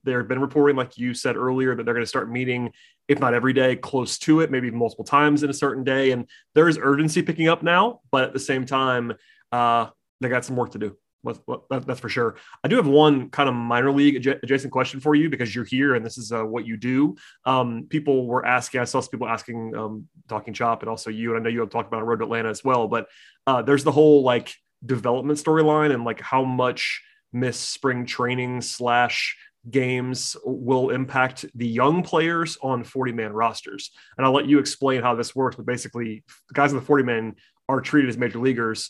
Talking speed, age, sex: 220 wpm, 30-49, male